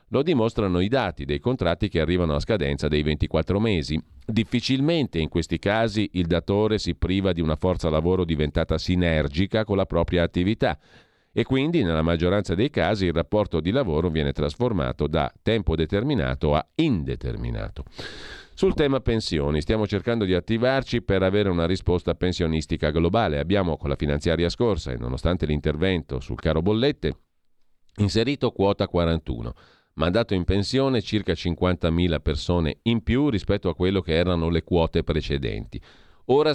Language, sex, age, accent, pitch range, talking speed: Italian, male, 40-59, native, 80-110 Hz, 150 wpm